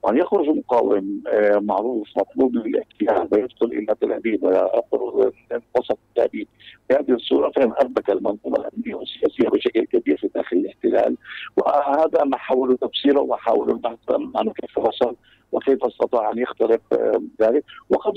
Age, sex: 50-69, male